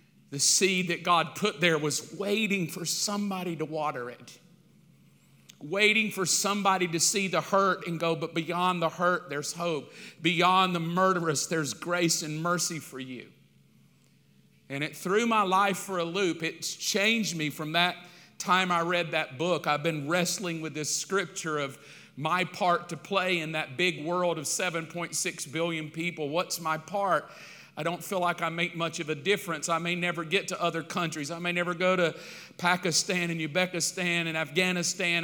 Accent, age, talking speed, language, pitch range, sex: American, 40-59, 175 wpm, English, 160-185 Hz, male